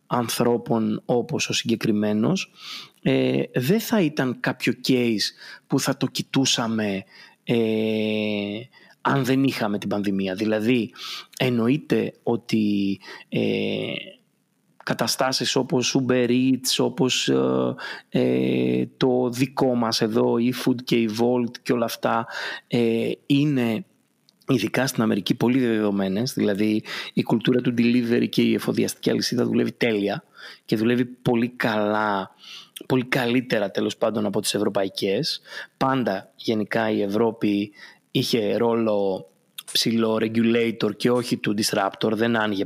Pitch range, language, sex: 105-125 Hz, Greek, male